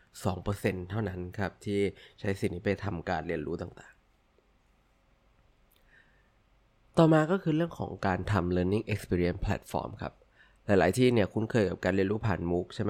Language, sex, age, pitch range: Thai, male, 20-39, 95-120 Hz